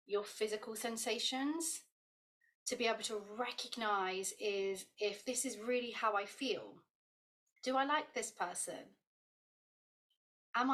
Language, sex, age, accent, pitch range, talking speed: English, female, 30-49, British, 200-255 Hz, 125 wpm